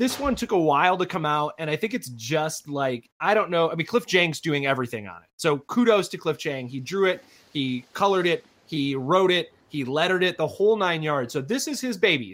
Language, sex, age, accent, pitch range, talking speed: English, male, 20-39, American, 140-190 Hz, 250 wpm